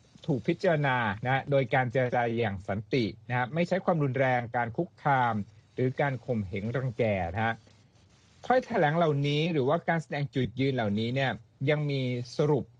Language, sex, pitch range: Thai, male, 115-150 Hz